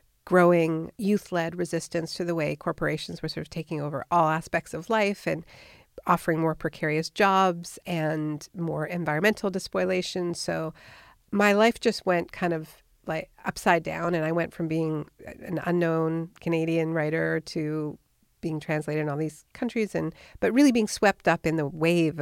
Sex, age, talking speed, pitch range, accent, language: female, 50-69, 160 wpm, 160-195 Hz, American, English